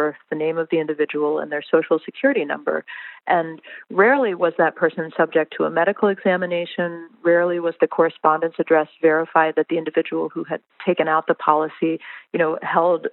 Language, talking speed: English, 175 wpm